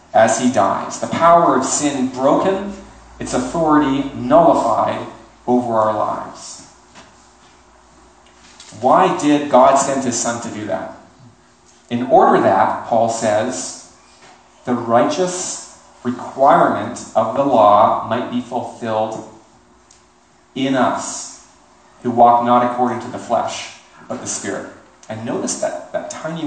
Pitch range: 115-135 Hz